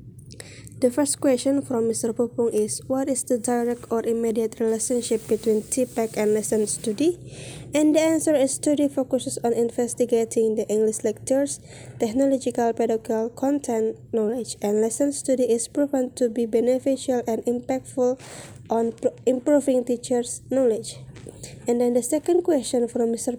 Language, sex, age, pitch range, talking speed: English, female, 20-39, 225-265 Hz, 140 wpm